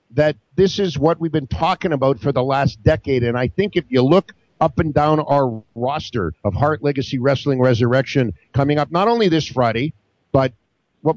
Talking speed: 195 wpm